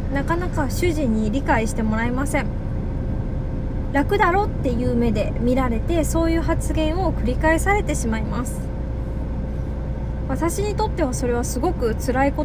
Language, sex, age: Japanese, female, 20-39